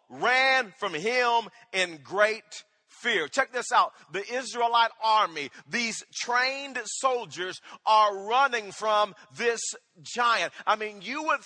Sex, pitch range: male, 160-245 Hz